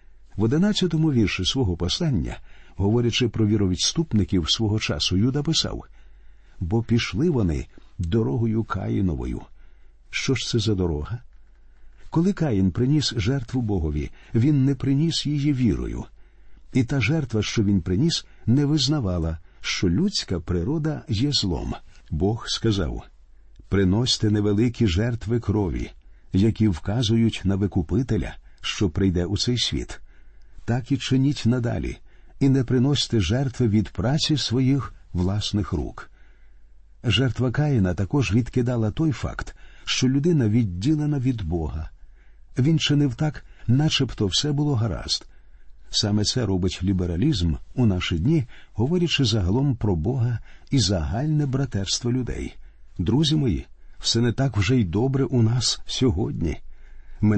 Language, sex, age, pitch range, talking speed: Ukrainian, male, 50-69, 95-135 Hz, 125 wpm